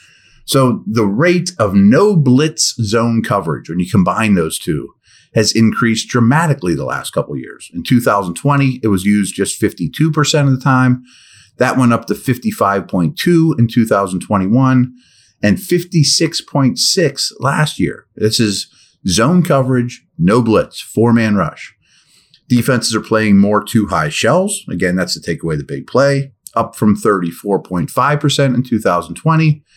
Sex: male